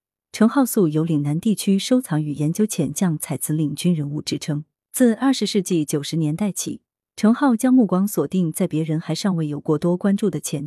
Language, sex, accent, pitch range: Chinese, female, native, 155-205 Hz